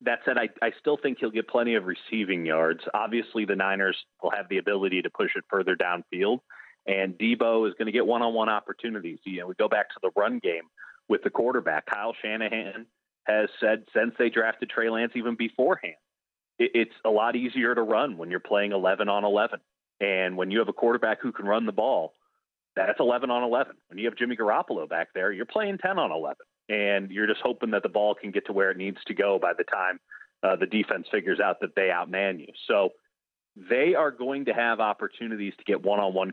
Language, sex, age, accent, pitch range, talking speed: English, male, 30-49, American, 100-125 Hz, 215 wpm